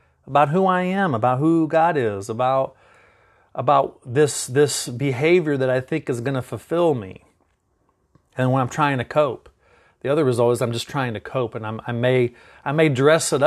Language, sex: English, male